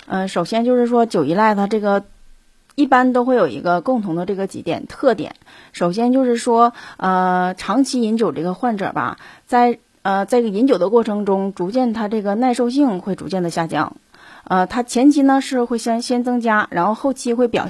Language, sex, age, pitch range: Chinese, female, 30-49, 175-235 Hz